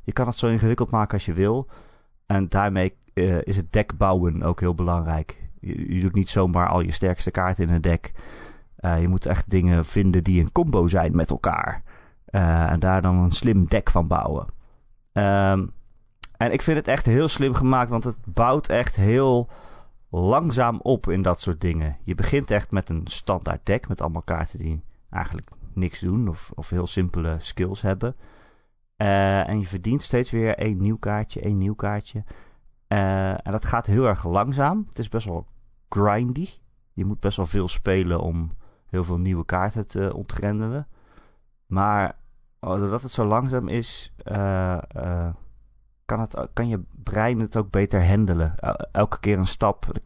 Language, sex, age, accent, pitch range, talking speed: Dutch, male, 30-49, Dutch, 90-110 Hz, 180 wpm